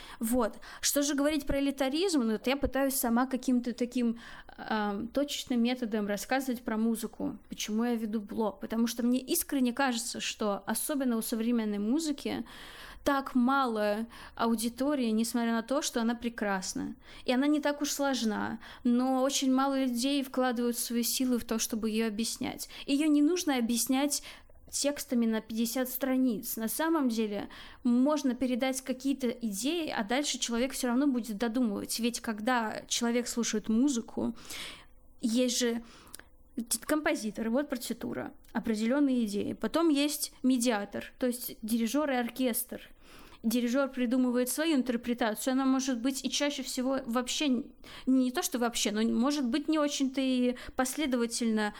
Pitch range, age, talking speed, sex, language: 235-275 Hz, 20-39, 145 wpm, female, Ukrainian